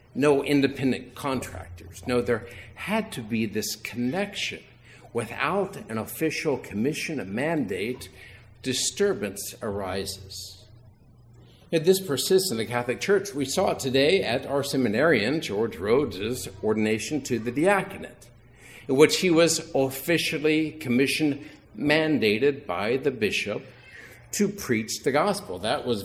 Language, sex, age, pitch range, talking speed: English, male, 60-79, 115-155 Hz, 120 wpm